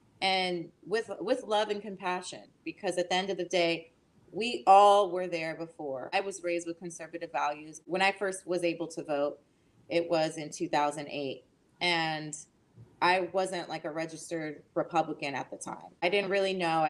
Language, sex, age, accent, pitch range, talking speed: English, female, 20-39, American, 160-190 Hz, 175 wpm